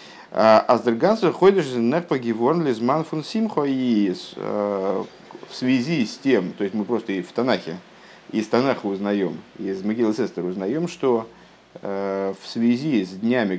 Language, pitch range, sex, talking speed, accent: Russian, 100-135 Hz, male, 130 wpm, native